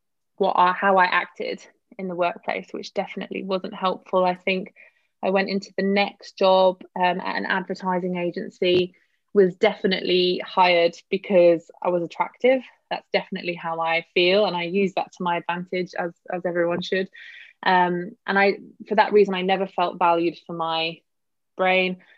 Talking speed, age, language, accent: 165 wpm, 20-39, English, British